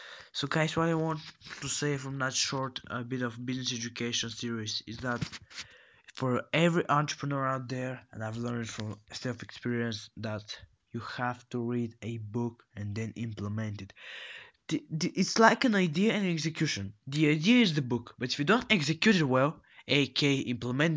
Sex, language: male, English